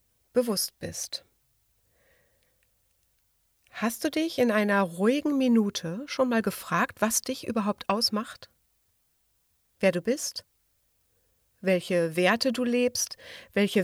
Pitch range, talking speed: 185-250 Hz, 105 wpm